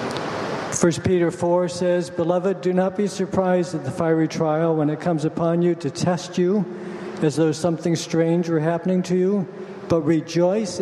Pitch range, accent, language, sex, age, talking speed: 155-180 Hz, American, English, male, 60-79, 170 wpm